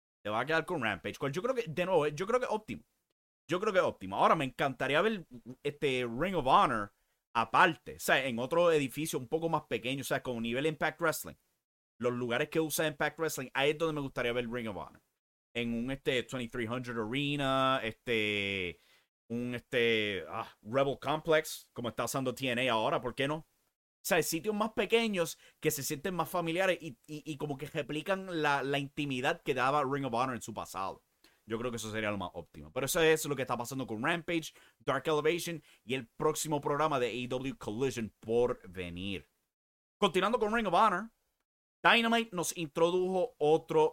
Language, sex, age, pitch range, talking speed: English, male, 30-49, 120-160 Hz, 200 wpm